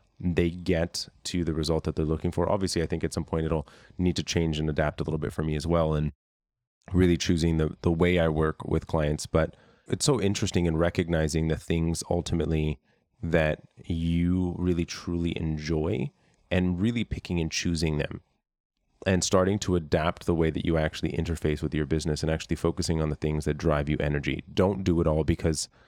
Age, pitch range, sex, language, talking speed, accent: 30-49, 80-90 Hz, male, English, 200 wpm, American